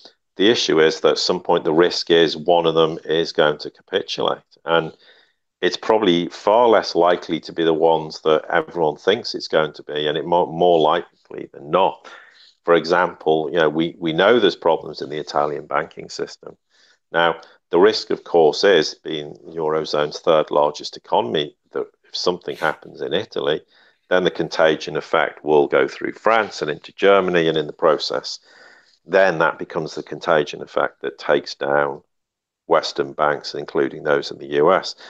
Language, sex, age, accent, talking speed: English, male, 50-69, British, 180 wpm